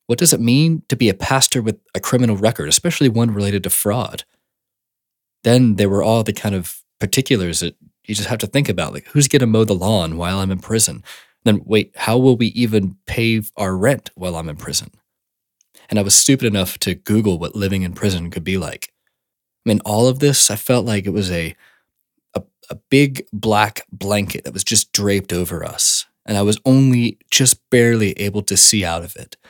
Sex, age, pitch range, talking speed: male, 20-39, 95-115 Hz, 215 wpm